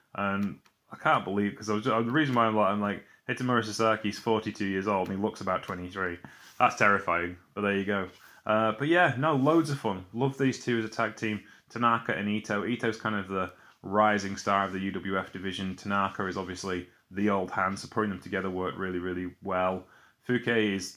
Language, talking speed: English, 205 wpm